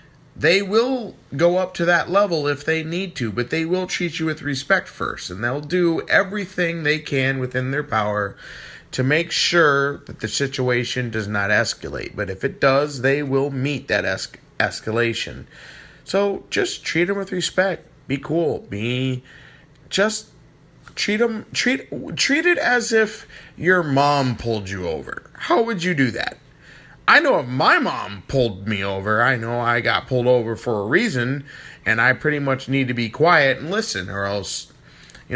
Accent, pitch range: American, 115-170 Hz